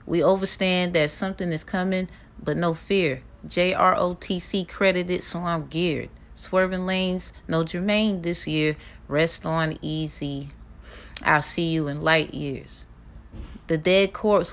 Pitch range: 155-190 Hz